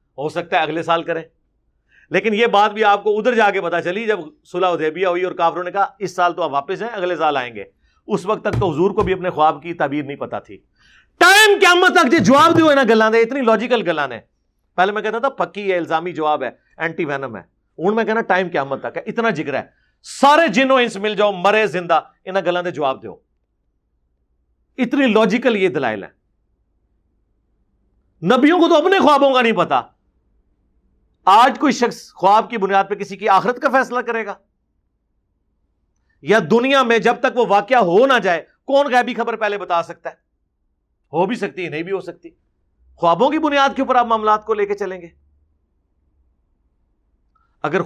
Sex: male